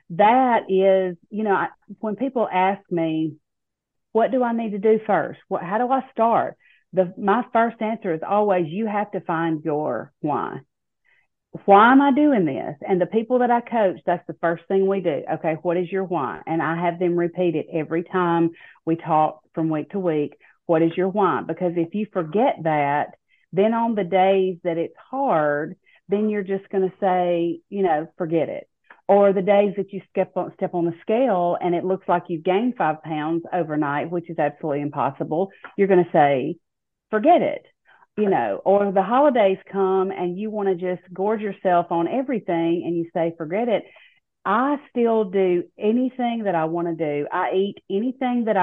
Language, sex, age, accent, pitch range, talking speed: English, female, 40-59, American, 170-210 Hz, 195 wpm